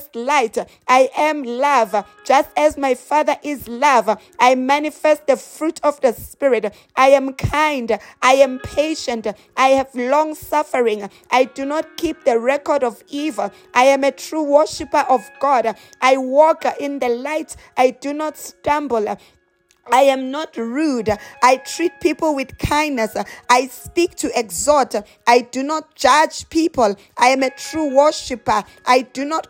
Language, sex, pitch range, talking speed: English, female, 245-295 Hz, 155 wpm